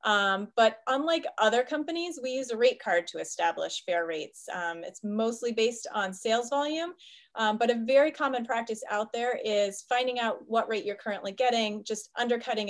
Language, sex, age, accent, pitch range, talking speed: English, female, 30-49, American, 190-245 Hz, 185 wpm